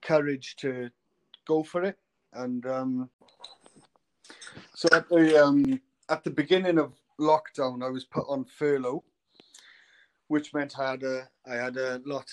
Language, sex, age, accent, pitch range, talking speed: English, male, 30-49, British, 120-145 Hz, 145 wpm